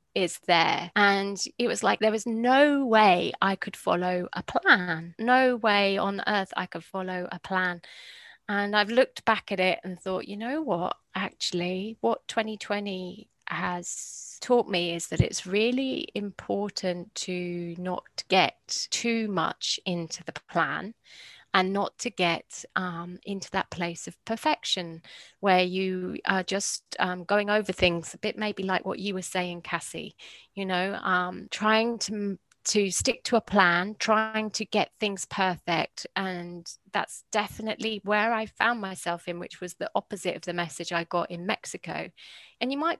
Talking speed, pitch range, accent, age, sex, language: 165 wpm, 180-220 Hz, British, 30-49, female, English